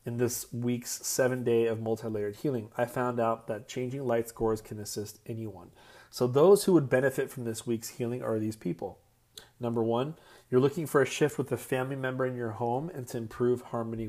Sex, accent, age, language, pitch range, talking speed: male, American, 30-49, English, 115-130 Hz, 205 wpm